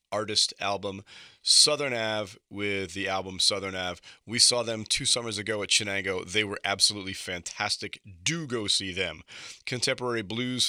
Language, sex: English, male